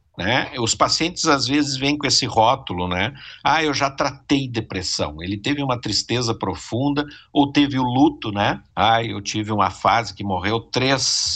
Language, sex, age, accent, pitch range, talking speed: Portuguese, male, 50-69, Brazilian, 100-145 Hz, 175 wpm